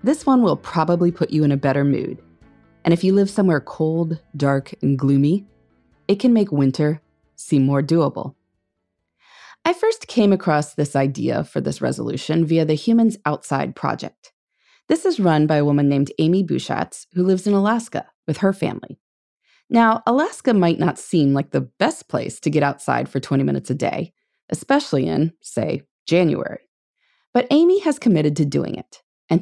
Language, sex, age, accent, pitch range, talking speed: English, female, 20-39, American, 140-205 Hz, 175 wpm